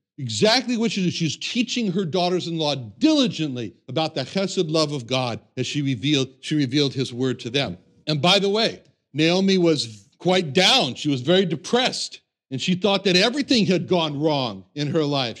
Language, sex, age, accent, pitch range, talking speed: English, male, 60-79, American, 130-190 Hz, 185 wpm